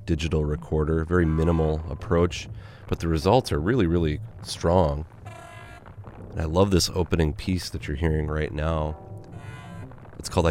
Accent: American